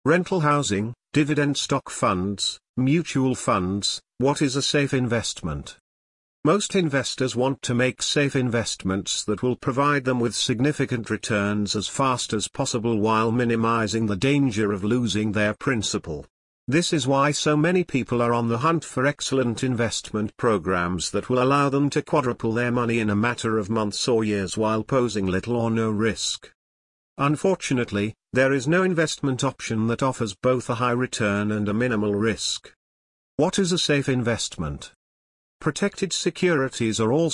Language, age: English, 50-69